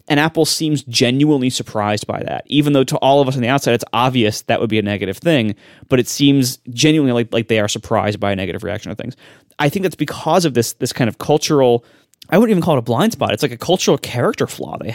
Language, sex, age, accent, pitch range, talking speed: English, male, 20-39, American, 115-155 Hz, 260 wpm